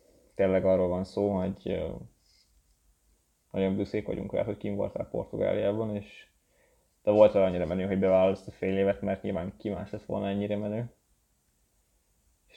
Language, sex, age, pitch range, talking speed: Hungarian, male, 20-39, 95-105 Hz, 160 wpm